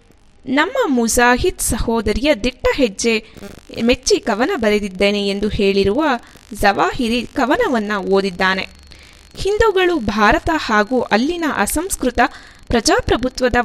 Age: 20-39